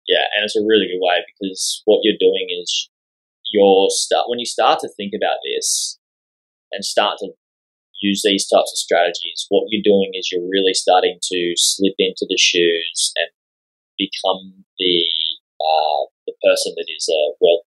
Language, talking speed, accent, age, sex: English, 175 wpm, Australian, 10-29, male